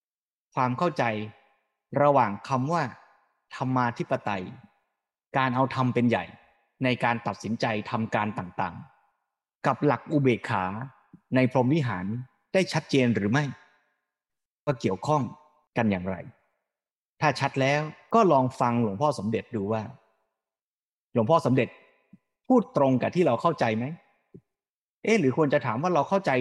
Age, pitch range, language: 30-49, 120-160 Hz, Thai